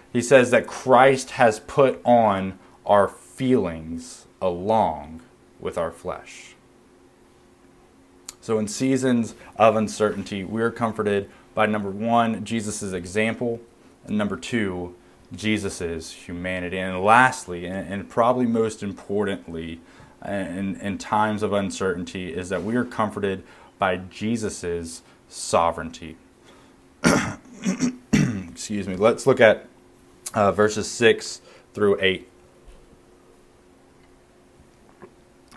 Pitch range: 90-120 Hz